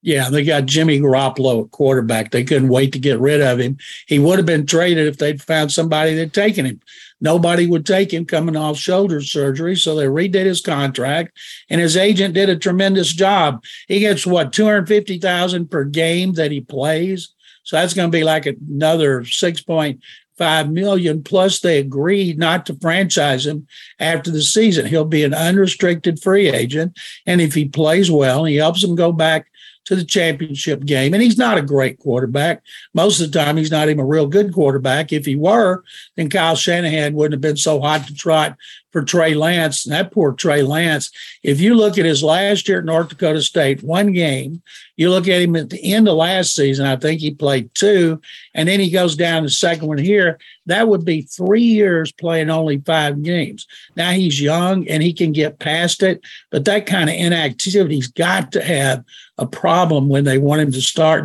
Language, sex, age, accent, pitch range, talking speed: English, male, 60-79, American, 150-185 Hz, 200 wpm